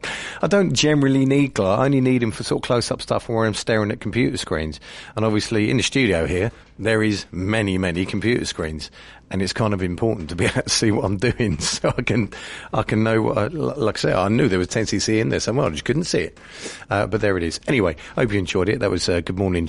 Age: 40-59